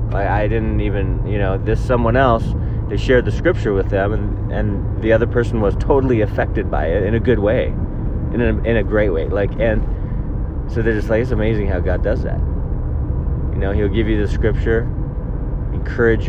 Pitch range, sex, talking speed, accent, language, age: 95-115 Hz, male, 200 wpm, American, English, 20-39